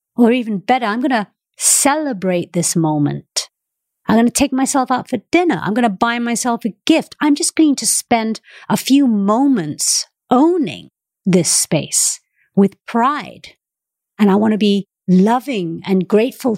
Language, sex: English, female